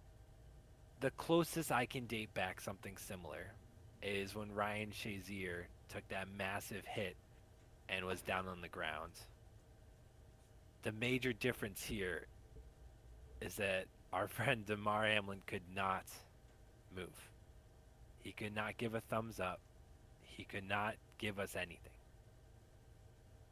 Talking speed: 120 wpm